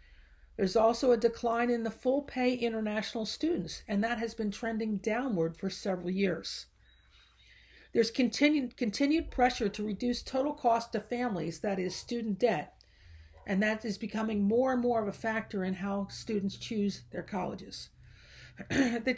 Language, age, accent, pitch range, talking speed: English, 50-69, American, 195-245 Hz, 155 wpm